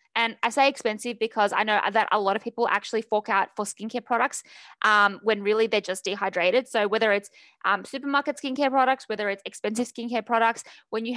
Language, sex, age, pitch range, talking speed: English, female, 20-39, 215-255 Hz, 205 wpm